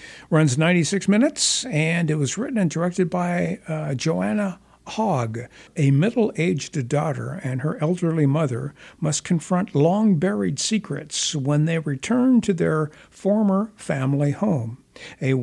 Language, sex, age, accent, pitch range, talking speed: English, male, 60-79, American, 140-180 Hz, 130 wpm